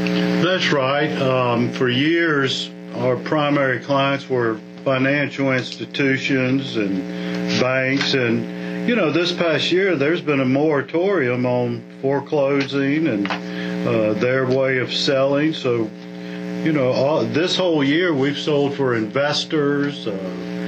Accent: American